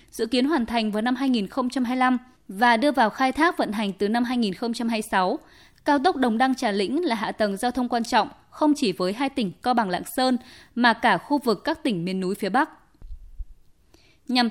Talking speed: 205 wpm